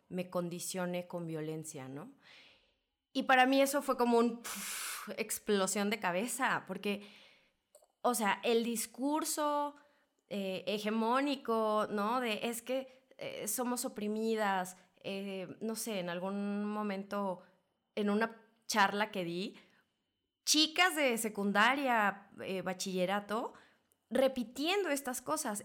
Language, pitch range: Spanish, 190-245 Hz